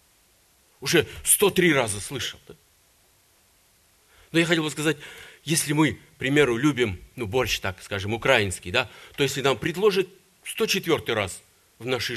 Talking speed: 145 wpm